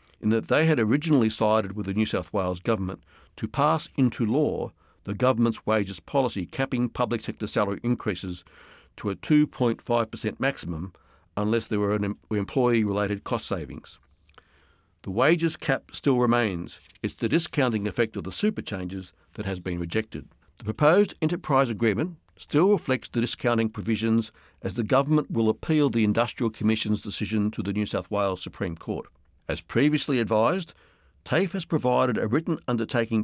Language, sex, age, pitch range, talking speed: English, male, 60-79, 100-135 Hz, 155 wpm